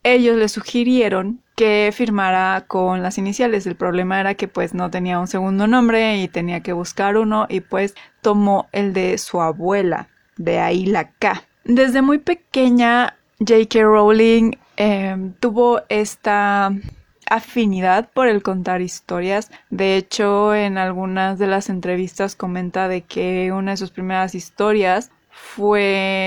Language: Spanish